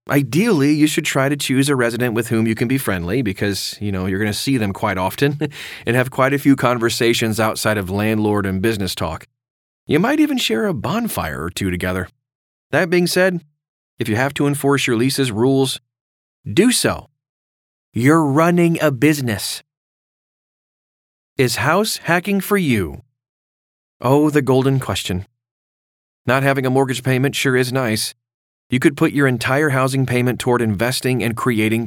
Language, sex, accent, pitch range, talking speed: English, male, American, 110-145 Hz, 170 wpm